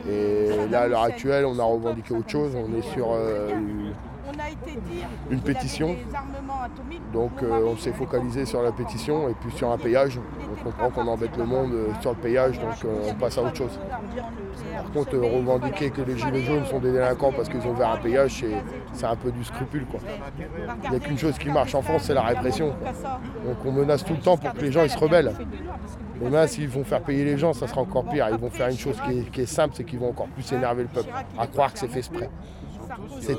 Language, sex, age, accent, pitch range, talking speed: French, male, 20-39, French, 115-165 Hz, 235 wpm